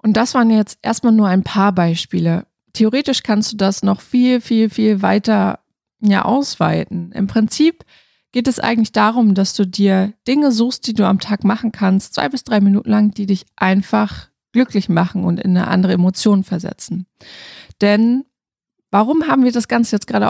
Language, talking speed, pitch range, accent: German, 175 wpm, 195-225 Hz, German